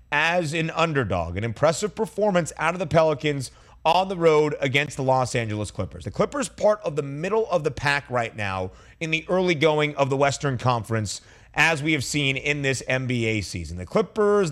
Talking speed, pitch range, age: 195 wpm, 120-175 Hz, 30-49